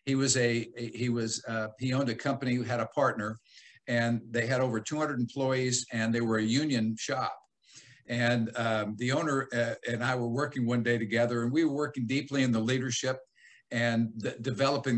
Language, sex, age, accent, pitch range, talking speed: English, male, 50-69, American, 120-145 Hz, 195 wpm